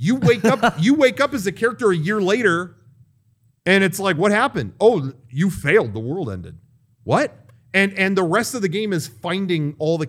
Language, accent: English, American